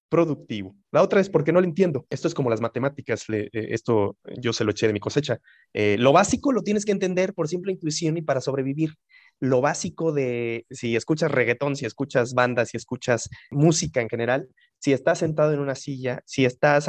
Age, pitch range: 30-49, 120-165 Hz